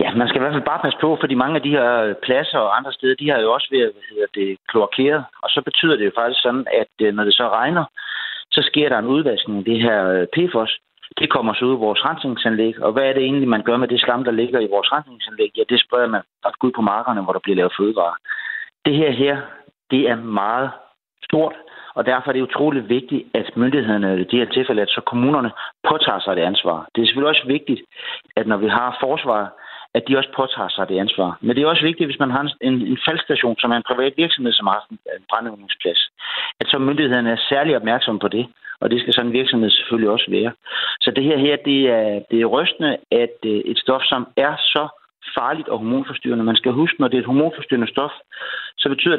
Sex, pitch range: male, 115-145 Hz